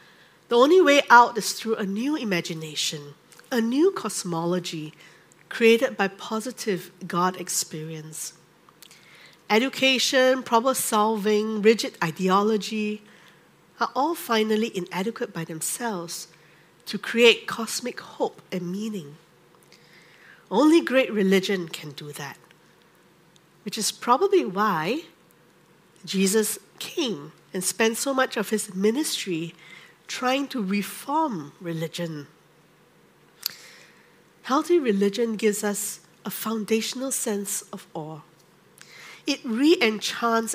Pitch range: 175-230 Hz